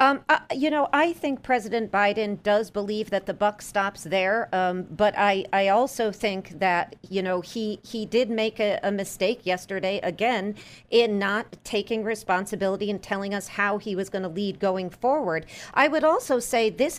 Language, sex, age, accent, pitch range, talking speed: English, female, 40-59, American, 190-245 Hz, 185 wpm